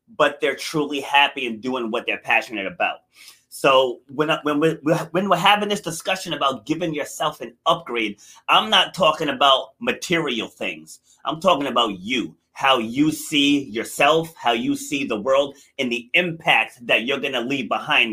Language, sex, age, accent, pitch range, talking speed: English, male, 30-49, American, 145-195 Hz, 165 wpm